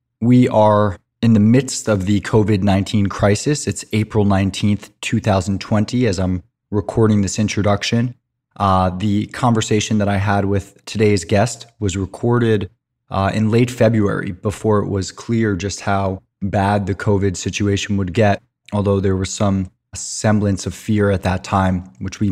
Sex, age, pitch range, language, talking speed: male, 20-39, 100-115 Hz, English, 155 wpm